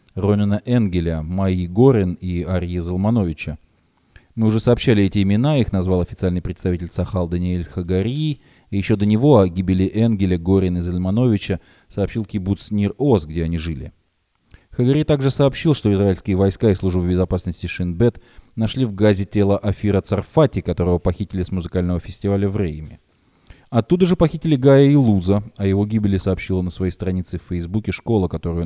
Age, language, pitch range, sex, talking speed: 20-39, Russian, 90-115 Hz, male, 155 wpm